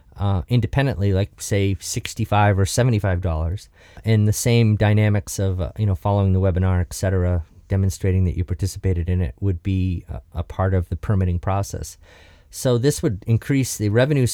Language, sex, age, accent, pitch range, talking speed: English, male, 40-59, American, 90-115 Hz, 165 wpm